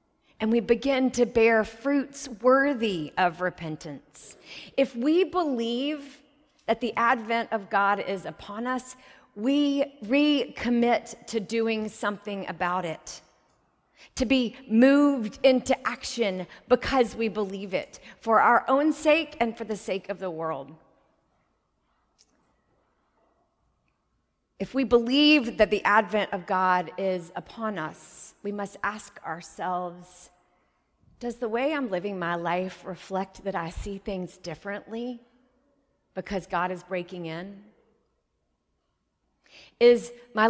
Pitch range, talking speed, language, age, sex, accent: 200-270 Hz, 120 wpm, English, 30-49, female, American